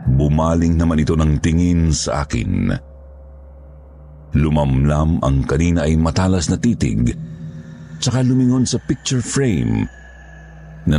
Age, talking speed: 50-69, 110 wpm